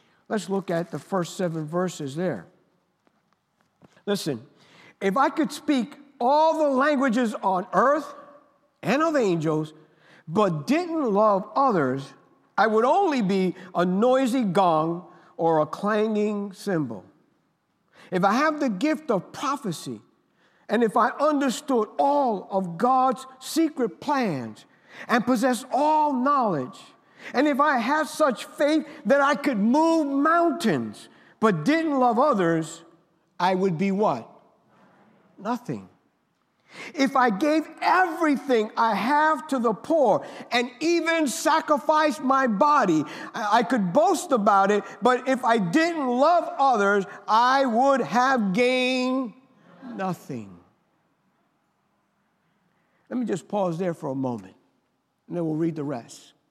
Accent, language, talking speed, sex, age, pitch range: American, English, 125 wpm, male, 50-69, 190-285 Hz